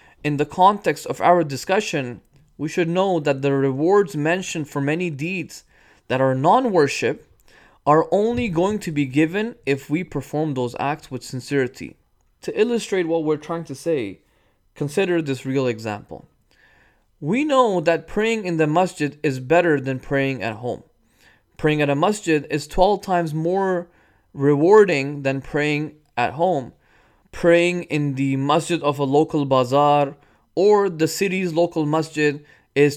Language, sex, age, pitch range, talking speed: English, male, 20-39, 140-175 Hz, 150 wpm